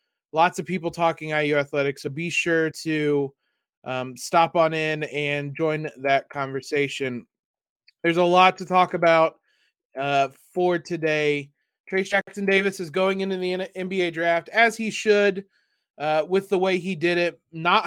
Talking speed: 155 wpm